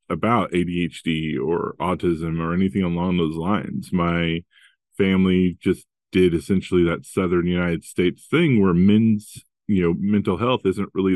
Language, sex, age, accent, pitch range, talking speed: English, male, 30-49, American, 85-100 Hz, 135 wpm